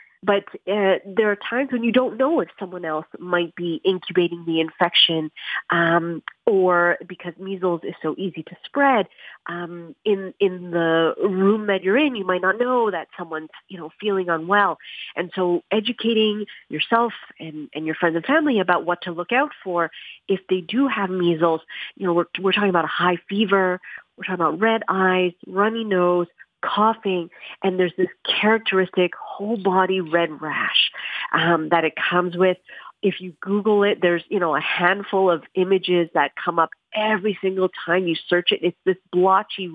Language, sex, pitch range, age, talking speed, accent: English, female, 175-205 Hz, 40-59, 180 wpm, American